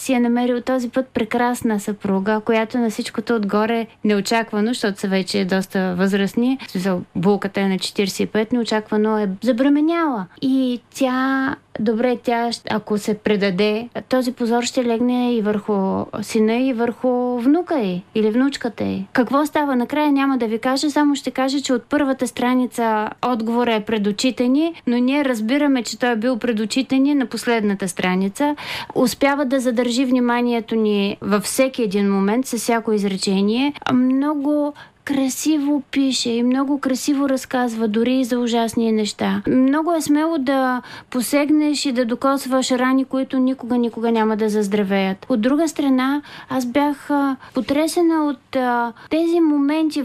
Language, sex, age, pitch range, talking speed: Bulgarian, female, 20-39, 220-265 Hz, 145 wpm